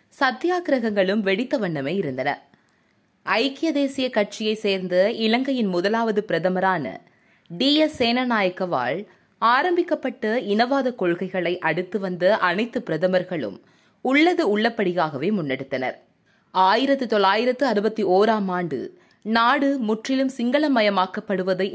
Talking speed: 85 wpm